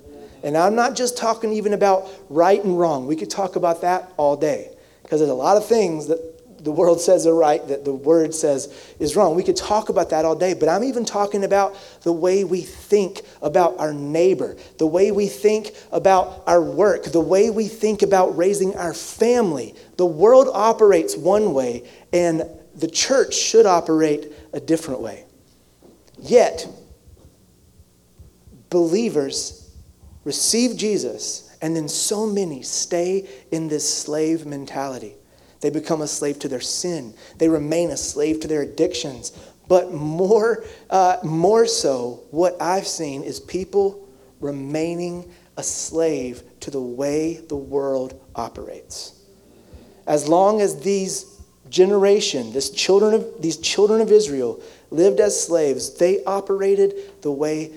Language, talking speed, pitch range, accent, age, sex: English, 155 wpm, 150-200 Hz, American, 30-49, male